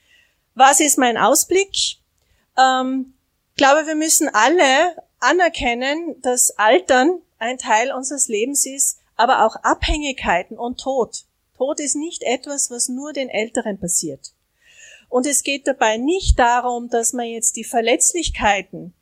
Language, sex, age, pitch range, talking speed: German, female, 40-59, 225-280 Hz, 135 wpm